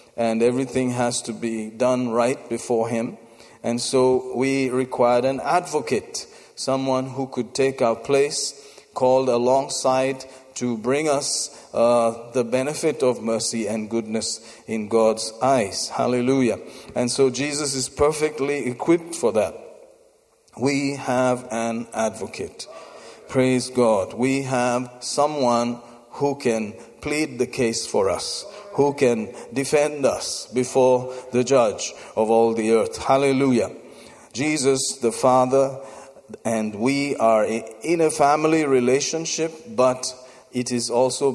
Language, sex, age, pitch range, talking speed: English, male, 40-59, 115-135 Hz, 125 wpm